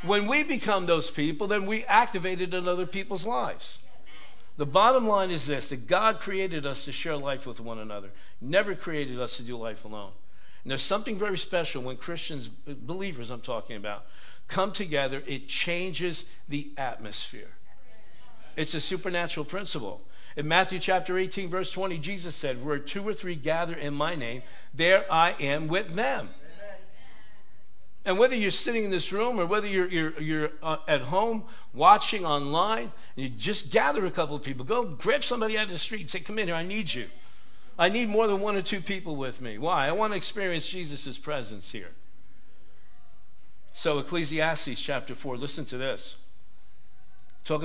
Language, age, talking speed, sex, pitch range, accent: English, 60-79, 180 wpm, male, 135-190 Hz, American